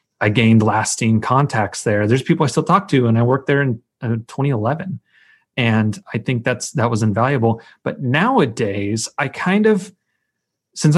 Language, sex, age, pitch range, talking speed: English, male, 30-49, 110-140 Hz, 170 wpm